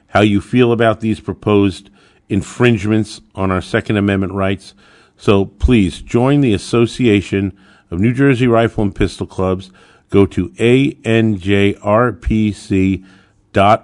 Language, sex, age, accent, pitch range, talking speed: English, male, 50-69, American, 100-125 Hz, 115 wpm